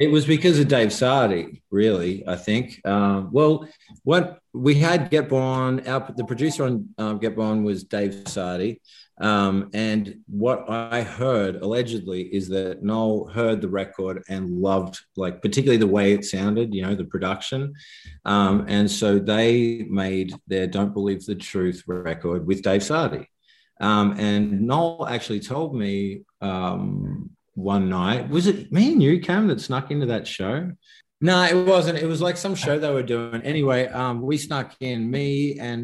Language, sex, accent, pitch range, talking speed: English, male, Australian, 100-140 Hz, 170 wpm